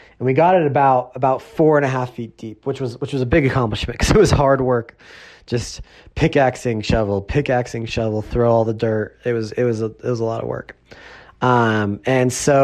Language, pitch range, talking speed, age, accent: English, 120-140 Hz, 225 wpm, 20-39, American